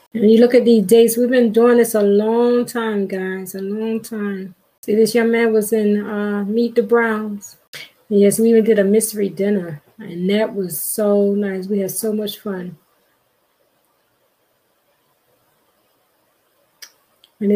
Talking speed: 155 wpm